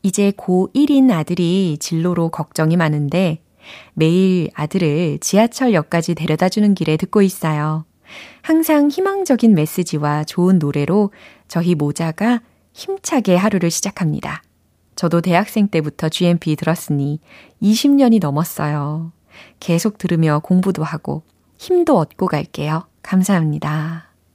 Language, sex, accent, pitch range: Korean, female, native, 155-205 Hz